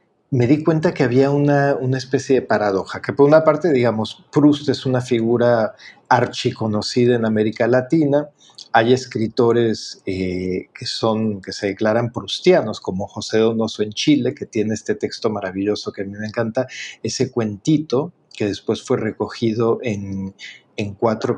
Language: Spanish